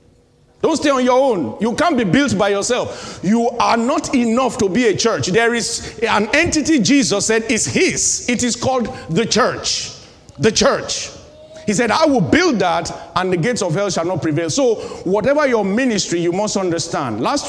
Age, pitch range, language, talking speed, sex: 50-69, 160-230 Hz, English, 190 wpm, male